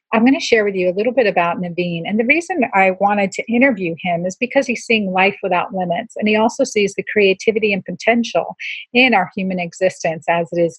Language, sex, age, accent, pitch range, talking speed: English, female, 40-59, American, 185-235 Hz, 230 wpm